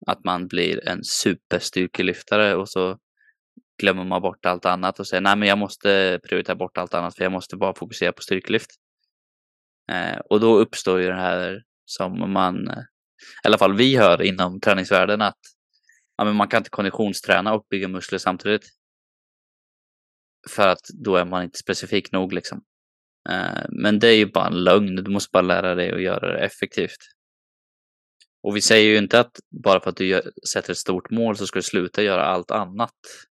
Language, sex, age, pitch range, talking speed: Swedish, male, 20-39, 90-105 Hz, 190 wpm